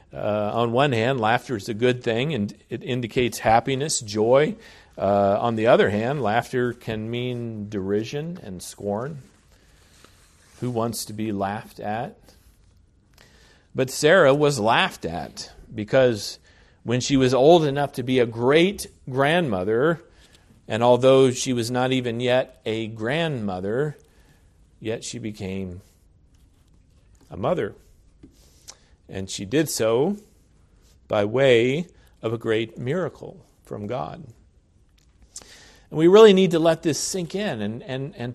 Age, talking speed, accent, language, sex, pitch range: 40-59, 130 wpm, American, English, male, 105-150 Hz